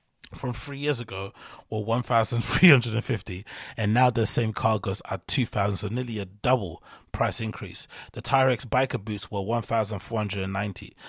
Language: English